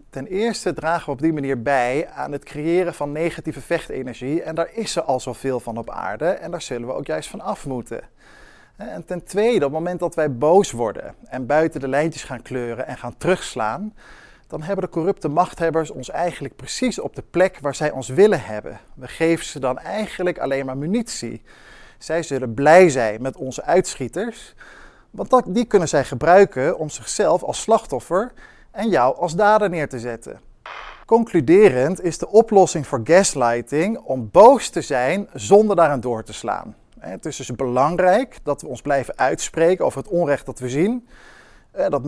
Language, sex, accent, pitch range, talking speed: Dutch, male, Dutch, 135-185 Hz, 185 wpm